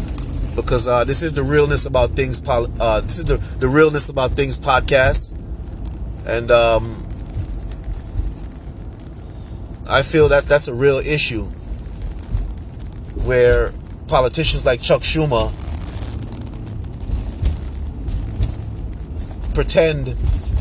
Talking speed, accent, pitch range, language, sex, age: 95 wpm, American, 85-130 Hz, English, male, 30-49